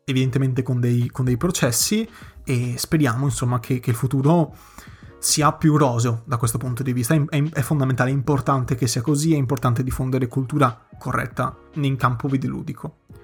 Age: 20-39